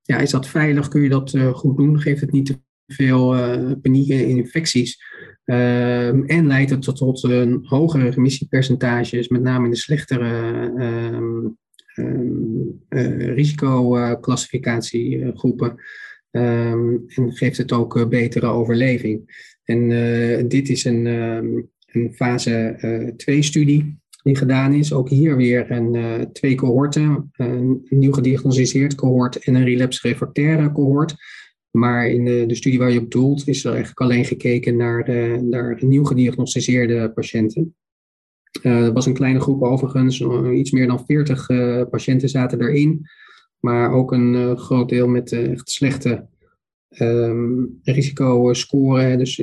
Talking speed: 140 wpm